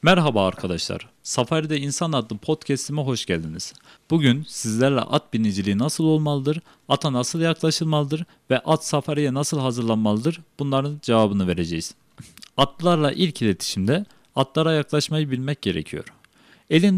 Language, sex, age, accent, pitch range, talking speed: Turkish, male, 40-59, native, 115-155 Hz, 115 wpm